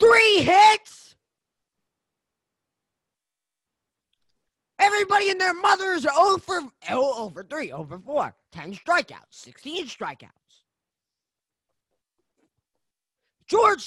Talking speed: 75 wpm